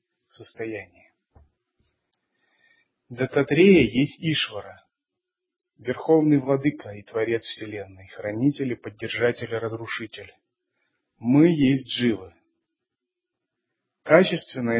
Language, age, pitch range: Russian, 30-49, 120-155 Hz